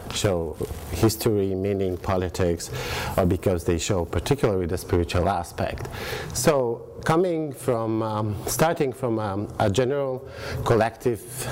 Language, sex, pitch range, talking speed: English, male, 95-120 Hz, 115 wpm